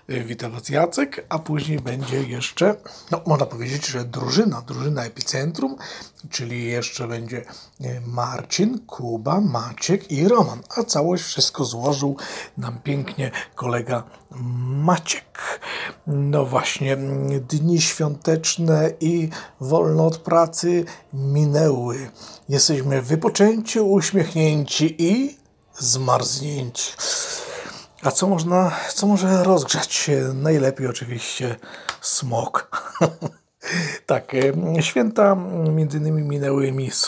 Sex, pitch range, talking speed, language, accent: male, 130-170 Hz, 95 wpm, Polish, native